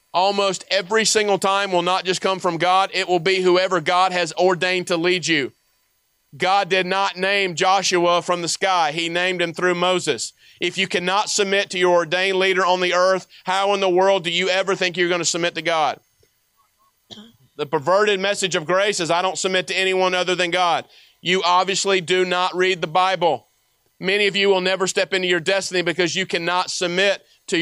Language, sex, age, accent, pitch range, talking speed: English, male, 40-59, American, 160-190 Hz, 200 wpm